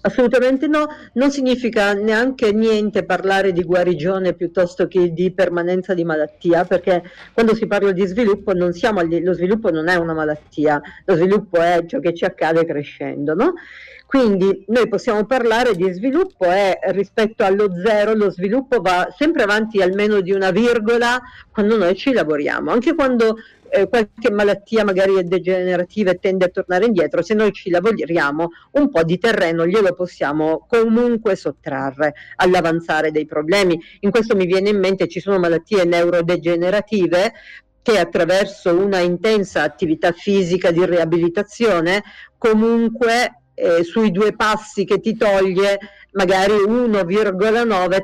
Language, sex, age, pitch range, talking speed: Italian, female, 50-69, 175-220 Hz, 145 wpm